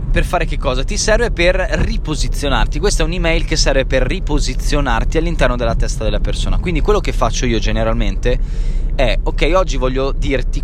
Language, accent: Italian, native